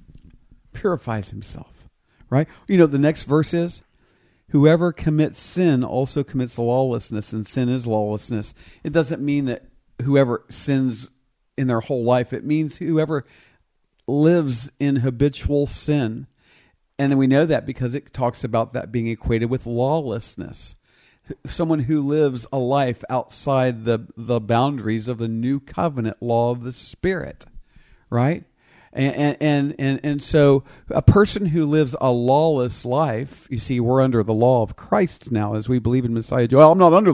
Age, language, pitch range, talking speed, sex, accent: 50-69, English, 120-150 Hz, 155 wpm, male, American